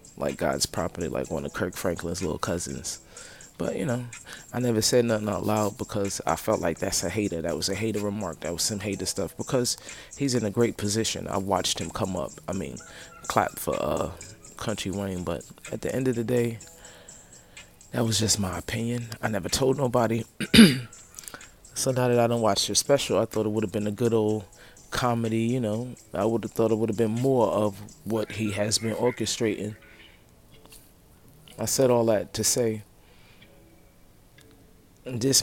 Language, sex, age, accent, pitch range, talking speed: English, male, 20-39, American, 105-125 Hz, 190 wpm